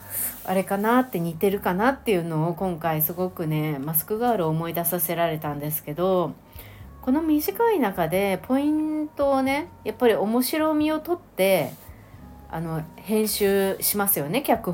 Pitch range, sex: 160-245 Hz, female